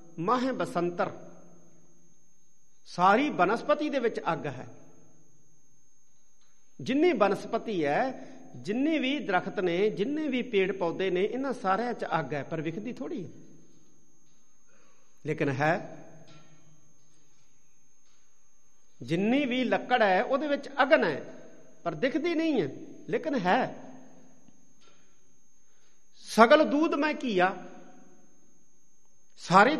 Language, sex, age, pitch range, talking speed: Punjabi, male, 50-69, 160-245 Hz, 90 wpm